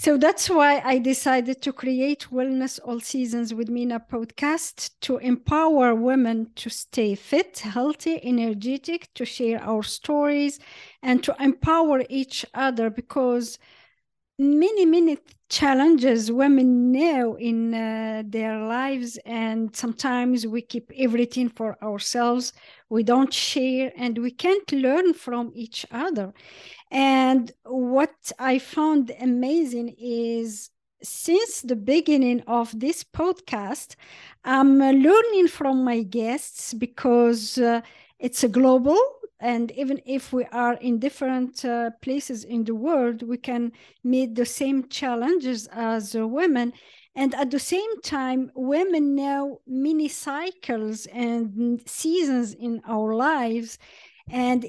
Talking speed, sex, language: 125 wpm, female, English